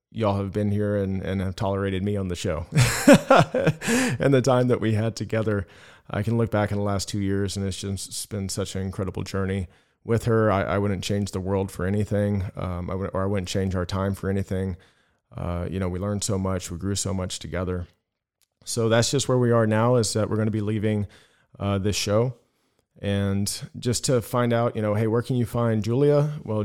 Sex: male